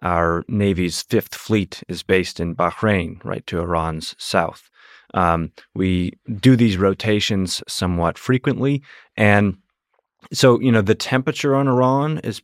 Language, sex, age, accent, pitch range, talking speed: English, male, 30-49, American, 90-110 Hz, 135 wpm